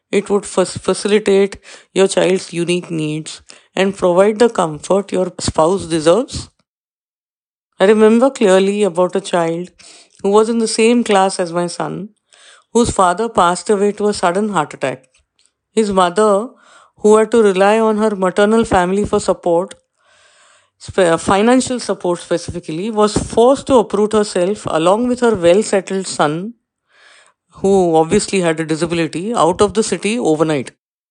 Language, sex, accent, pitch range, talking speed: English, female, Indian, 175-215 Hz, 140 wpm